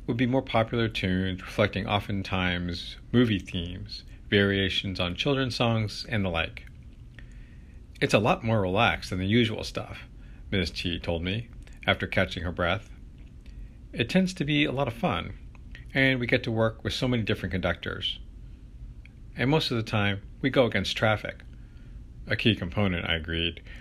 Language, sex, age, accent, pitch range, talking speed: English, male, 50-69, American, 85-110 Hz, 165 wpm